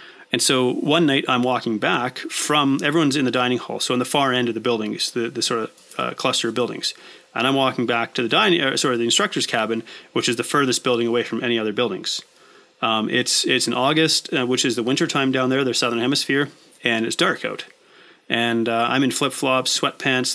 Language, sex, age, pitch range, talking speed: English, male, 30-49, 120-135 Hz, 220 wpm